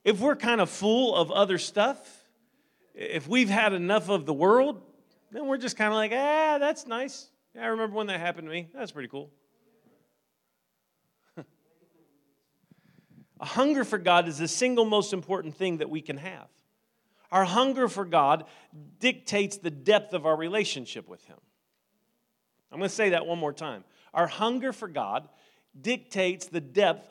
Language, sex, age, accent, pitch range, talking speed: English, male, 40-59, American, 175-215 Hz, 165 wpm